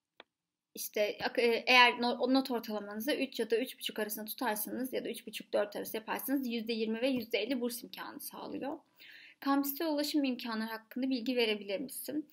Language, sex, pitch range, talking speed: Turkish, female, 215-275 Hz, 140 wpm